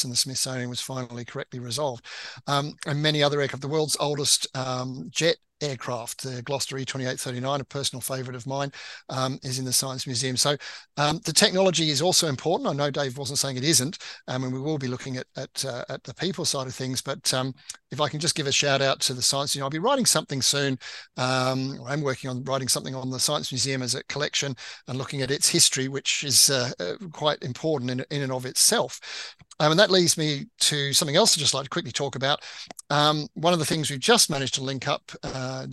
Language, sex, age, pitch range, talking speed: English, male, 50-69, 130-150 Hz, 230 wpm